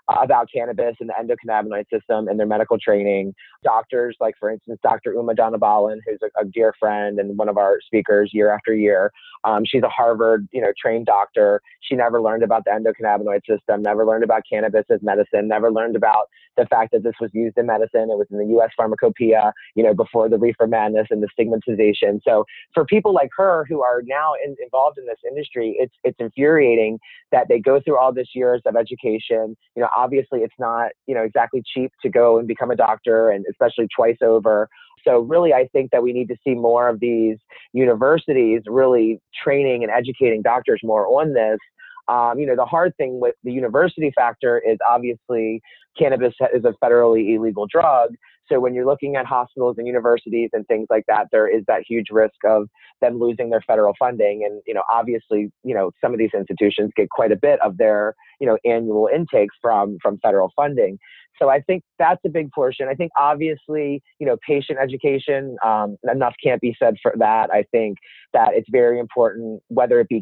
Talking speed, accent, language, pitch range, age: 205 wpm, American, English, 110-150 Hz, 30-49